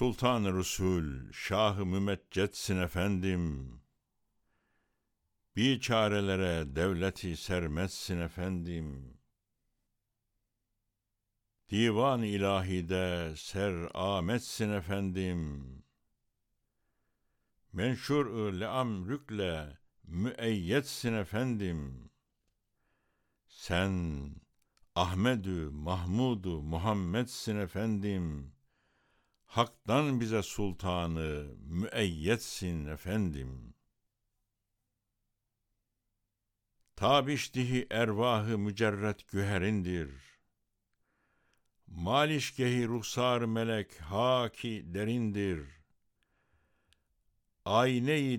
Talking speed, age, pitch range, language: 45 wpm, 60-79, 90-115 Hz, Turkish